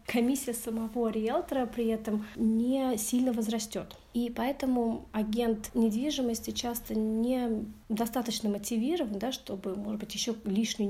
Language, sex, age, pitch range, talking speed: Russian, female, 30-49, 205-235 Hz, 120 wpm